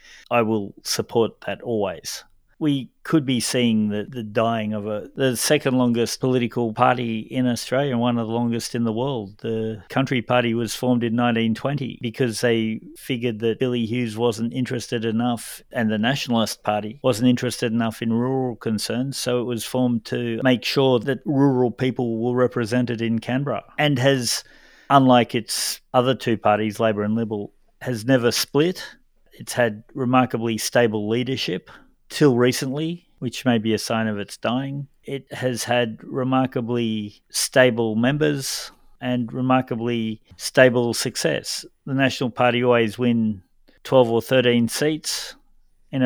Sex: male